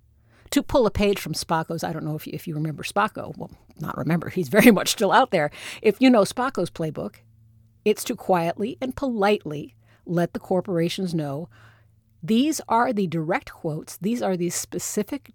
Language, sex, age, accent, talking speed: English, female, 50-69, American, 180 wpm